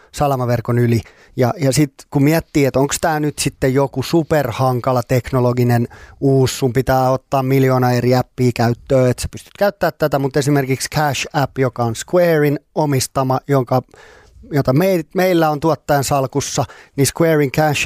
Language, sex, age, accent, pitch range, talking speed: Finnish, male, 30-49, native, 130-155 Hz, 150 wpm